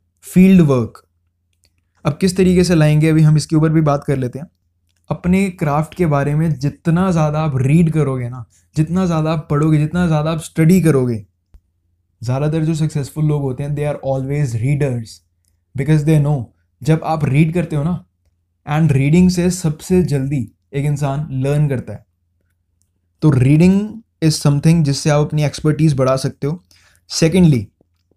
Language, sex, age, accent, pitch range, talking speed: Hindi, male, 20-39, native, 130-160 Hz, 165 wpm